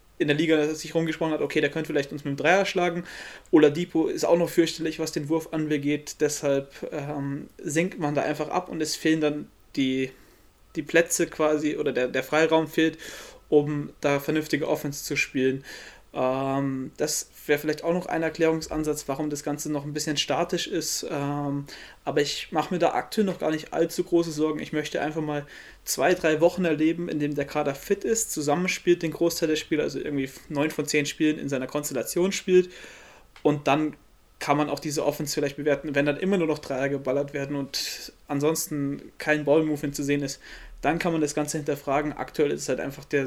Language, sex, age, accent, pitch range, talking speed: German, male, 20-39, German, 140-160 Hz, 200 wpm